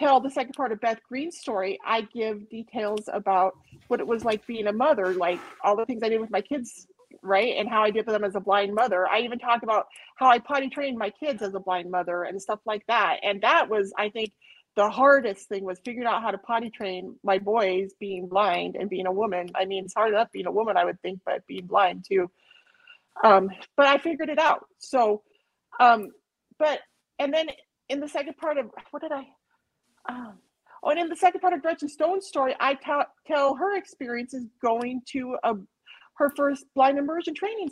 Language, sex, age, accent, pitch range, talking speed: English, female, 30-49, American, 215-305 Hz, 215 wpm